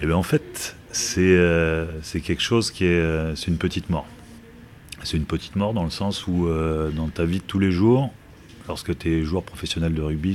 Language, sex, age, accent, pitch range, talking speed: French, male, 30-49, French, 75-95 Hz, 225 wpm